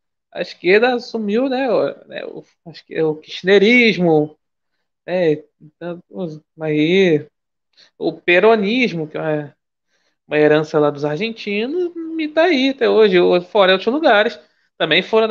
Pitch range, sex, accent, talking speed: 160-230 Hz, male, Brazilian, 120 wpm